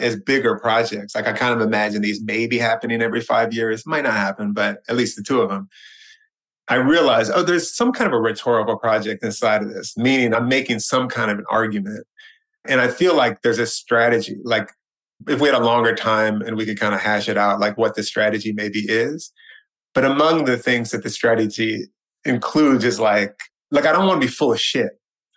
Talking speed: 220 wpm